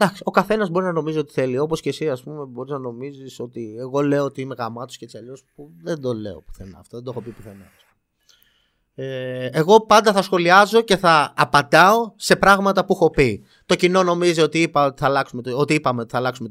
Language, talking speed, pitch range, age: Greek, 215 wpm, 130-195 Hz, 20-39